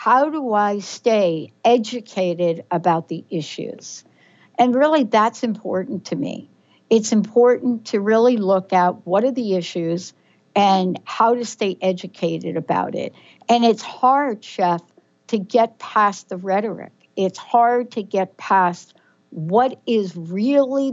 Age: 60-79